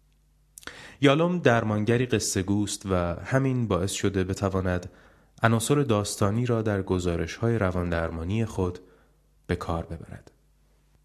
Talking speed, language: 115 wpm, Persian